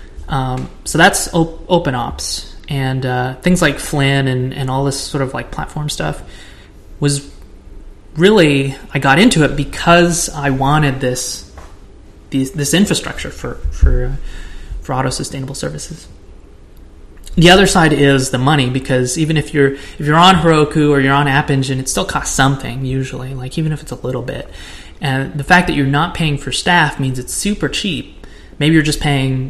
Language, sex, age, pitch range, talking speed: English, male, 20-39, 130-150 Hz, 175 wpm